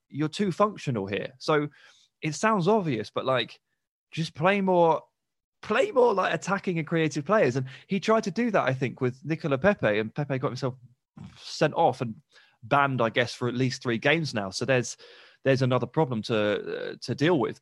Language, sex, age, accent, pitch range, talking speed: English, male, 20-39, British, 125-165 Hz, 195 wpm